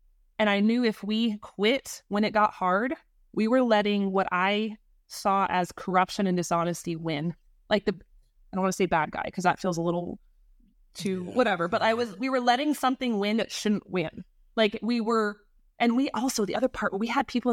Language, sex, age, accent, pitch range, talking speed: English, female, 20-39, American, 190-230 Hz, 210 wpm